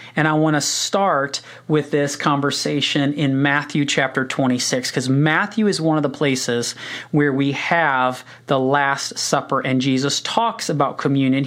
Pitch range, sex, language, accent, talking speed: 145-200 Hz, male, English, American, 155 wpm